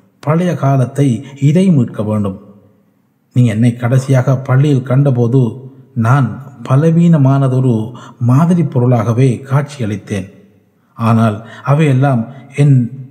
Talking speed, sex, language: 85 wpm, male, Tamil